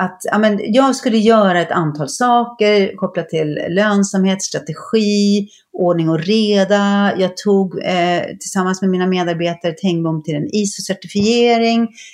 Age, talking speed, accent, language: 30-49, 130 wpm, native, Swedish